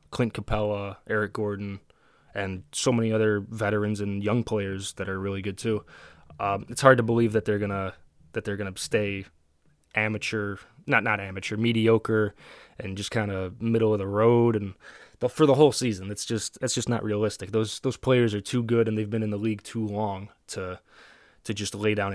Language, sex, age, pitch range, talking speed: English, male, 20-39, 100-125 Hz, 200 wpm